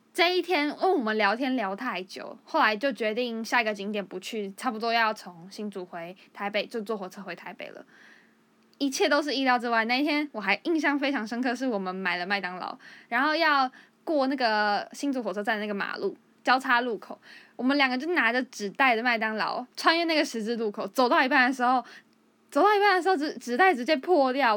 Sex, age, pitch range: female, 10-29, 220-300 Hz